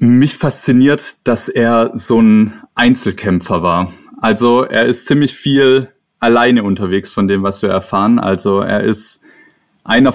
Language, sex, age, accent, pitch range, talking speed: German, male, 20-39, German, 105-135 Hz, 140 wpm